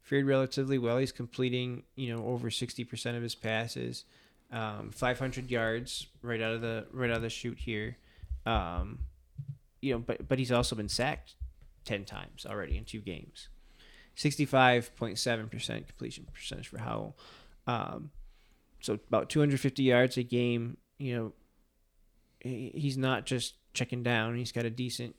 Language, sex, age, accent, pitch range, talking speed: English, male, 20-39, American, 110-125 Hz, 150 wpm